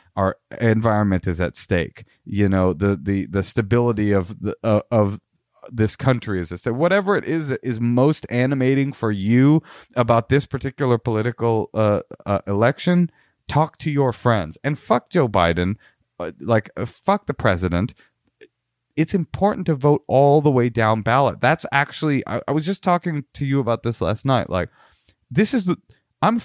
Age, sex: 30-49, male